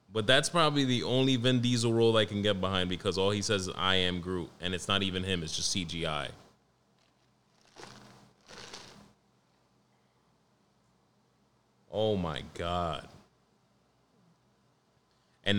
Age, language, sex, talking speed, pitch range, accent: 20-39, English, male, 125 wpm, 90-120 Hz, American